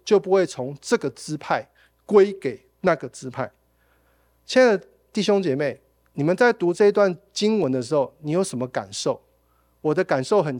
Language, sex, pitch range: Chinese, male, 140-205 Hz